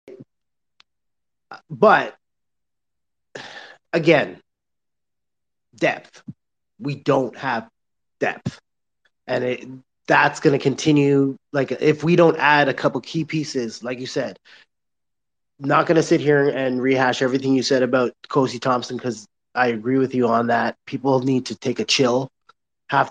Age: 30-49